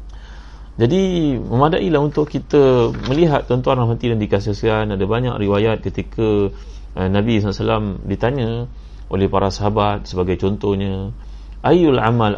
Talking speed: 115 wpm